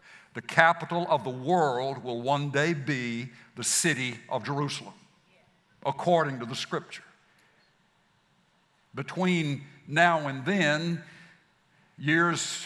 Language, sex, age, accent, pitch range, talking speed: English, male, 60-79, American, 135-170 Hz, 105 wpm